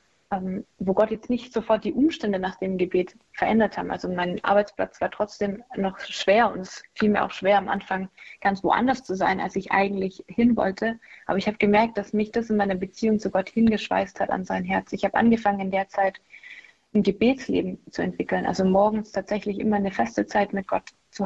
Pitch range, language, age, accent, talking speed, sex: 190-220 Hz, German, 20-39, German, 205 wpm, female